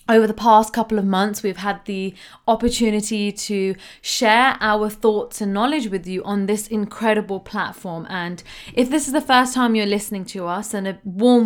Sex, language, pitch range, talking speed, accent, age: female, English, 195-235 Hz, 190 wpm, British, 20-39